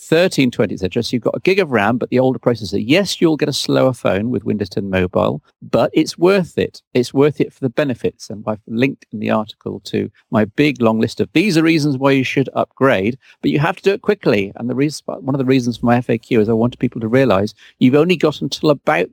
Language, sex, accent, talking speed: English, male, British, 250 wpm